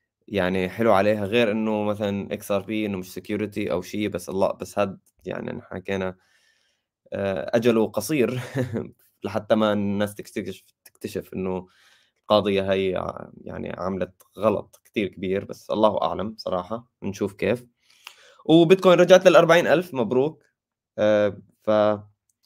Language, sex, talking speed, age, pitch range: Arabic, male, 125 wpm, 20-39, 95-115 Hz